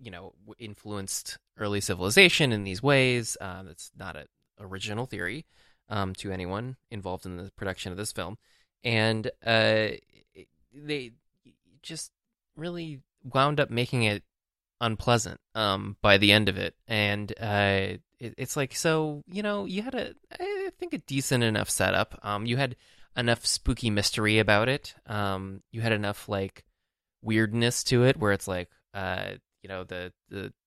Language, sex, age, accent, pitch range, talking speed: English, male, 20-39, American, 95-130 Hz, 155 wpm